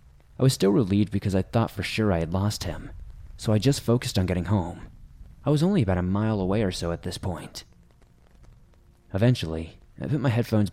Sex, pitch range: male, 90-115 Hz